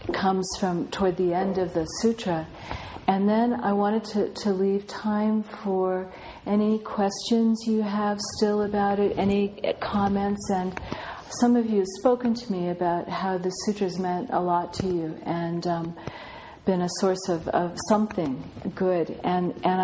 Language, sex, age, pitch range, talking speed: English, female, 50-69, 165-195 Hz, 165 wpm